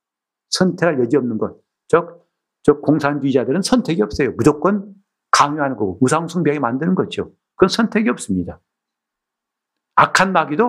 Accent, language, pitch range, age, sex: native, Korean, 110-180 Hz, 50-69, male